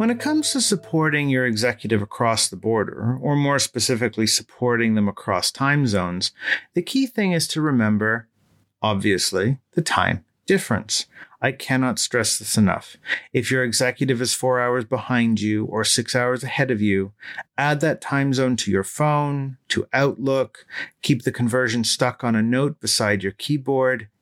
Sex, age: male, 40-59